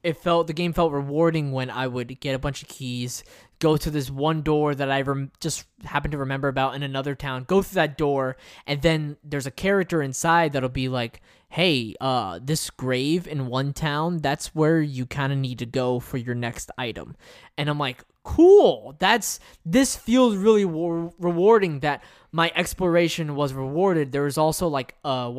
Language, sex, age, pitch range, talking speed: English, male, 20-39, 135-170 Hz, 190 wpm